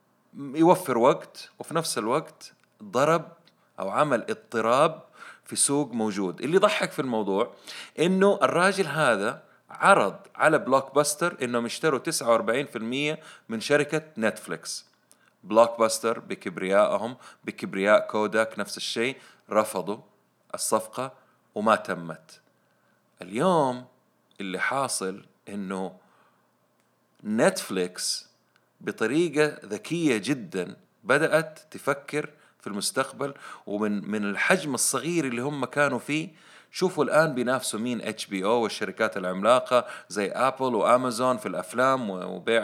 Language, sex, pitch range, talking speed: Arabic, male, 110-155 Hz, 105 wpm